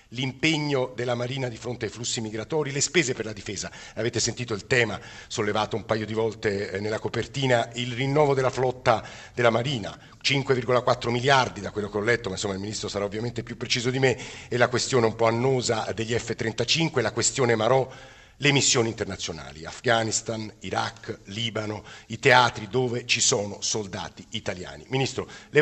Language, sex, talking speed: Italian, male, 170 wpm